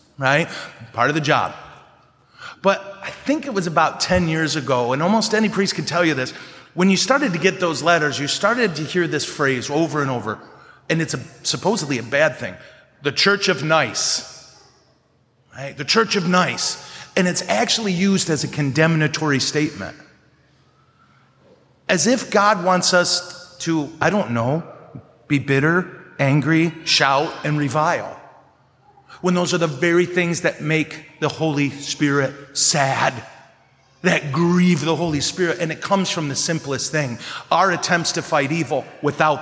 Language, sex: English, male